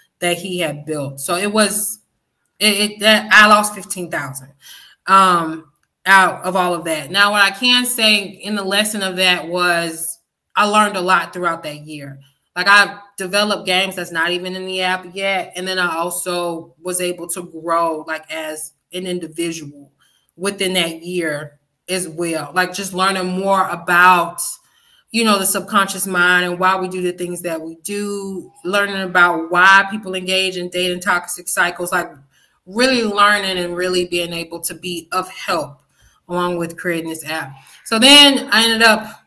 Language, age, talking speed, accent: English, 20-39, 175 wpm, American